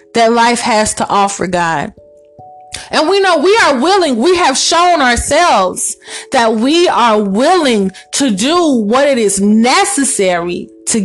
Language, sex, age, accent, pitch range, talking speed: English, female, 20-39, American, 210-285 Hz, 145 wpm